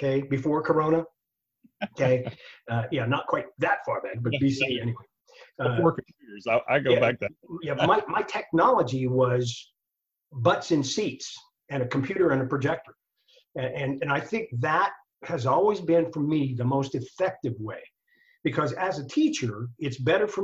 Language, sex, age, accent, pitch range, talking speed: English, male, 50-69, American, 130-170 Hz, 150 wpm